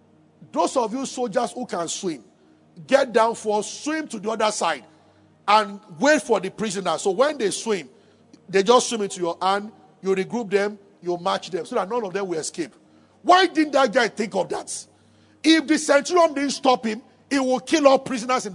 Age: 50-69